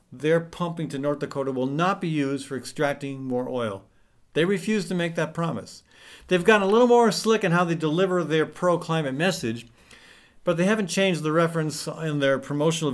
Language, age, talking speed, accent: English, 50-69, 195 wpm, American